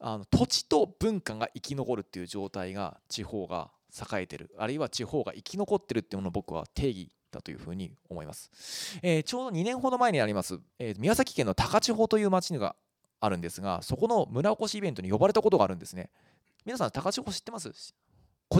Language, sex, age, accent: Japanese, male, 20-39, native